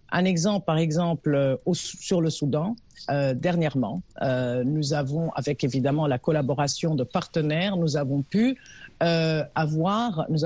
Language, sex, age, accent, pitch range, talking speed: French, female, 50-69, French, 145-180 Hz, 140 wpm